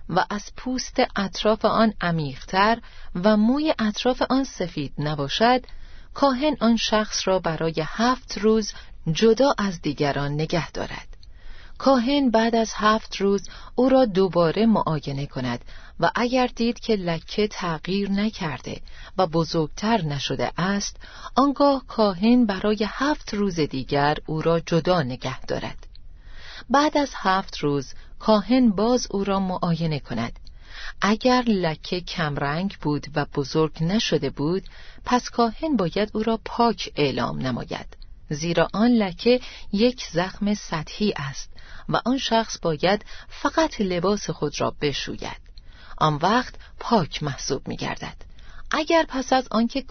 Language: Persian